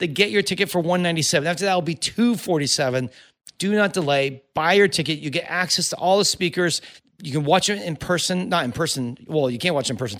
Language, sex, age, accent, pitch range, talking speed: English, male, 40-59, American, 150-195 Hz, 235 wpm